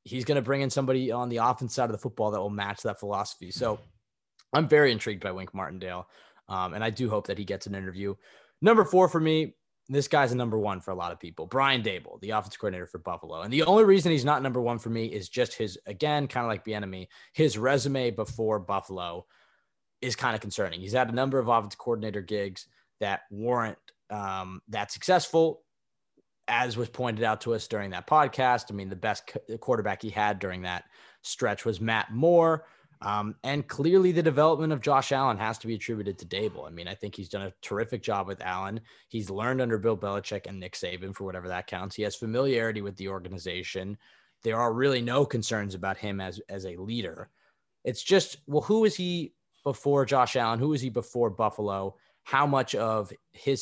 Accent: American